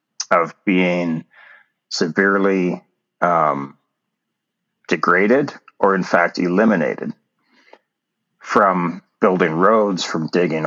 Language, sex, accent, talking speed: English, male, American, 80 wpm